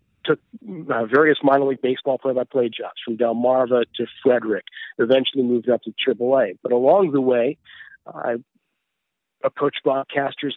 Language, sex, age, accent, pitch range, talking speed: English, male, 50-69, American, 120-140 Hz, 130 wpm